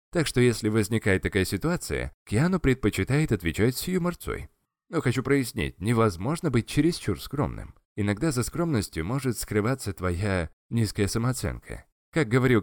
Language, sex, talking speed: Russian, male, 135 wpm